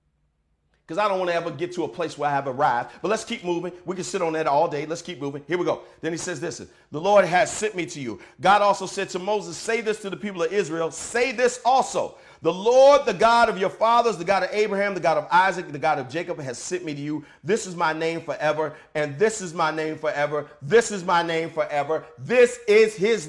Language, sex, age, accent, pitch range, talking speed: English, male, 40-59, American, 160-235 Hz, 260 wpm